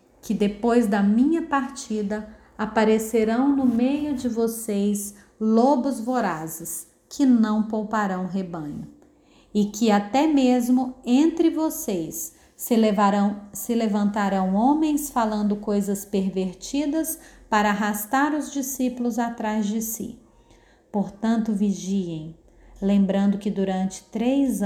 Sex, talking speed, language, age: female, 100 wpm, Portuguese, 30-49